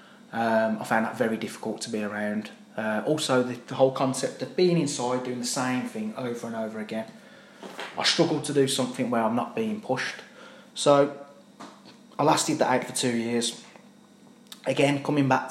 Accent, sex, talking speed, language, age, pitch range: British, male, 180 wpm, English, 20-39, 115-195 Hz